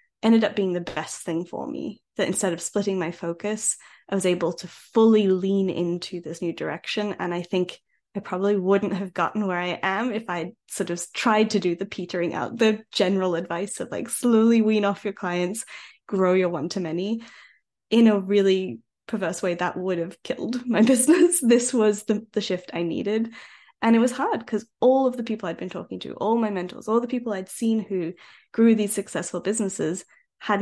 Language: English